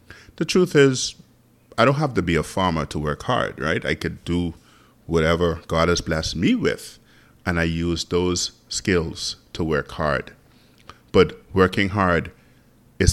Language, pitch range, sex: English, 80-95 Hz, male